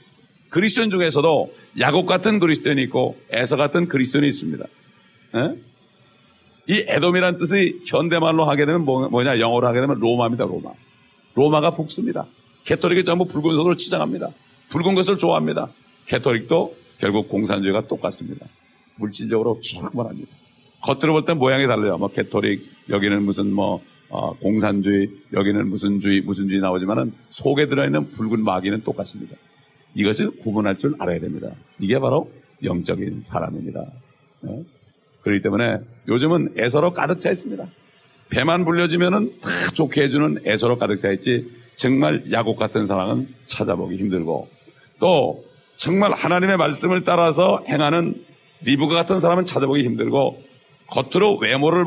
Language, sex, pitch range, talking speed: English, male, 110-170 Hz, 125 wpm